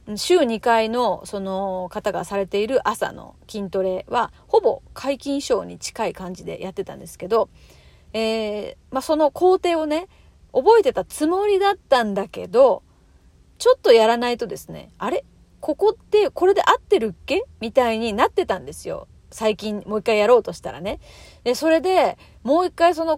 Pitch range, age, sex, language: 215-355 Hz, 40-59, female, Japanese